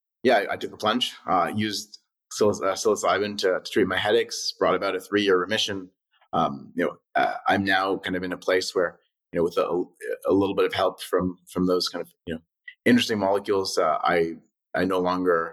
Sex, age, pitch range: male, 30-49, 90-110 Hz